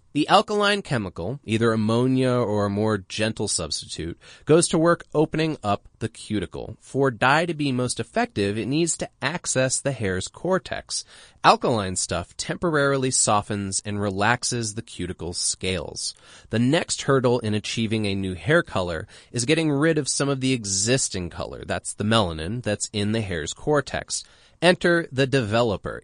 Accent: American